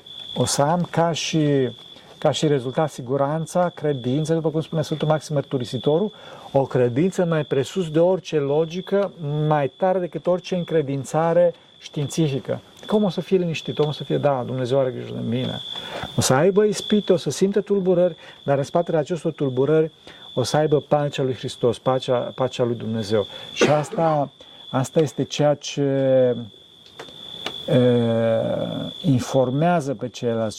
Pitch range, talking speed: 125-160 Hz, 145 wpm